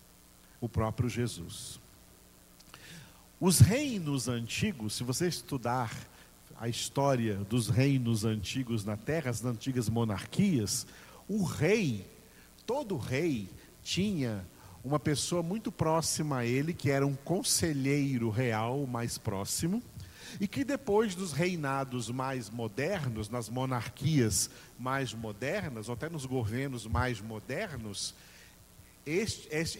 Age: 50-69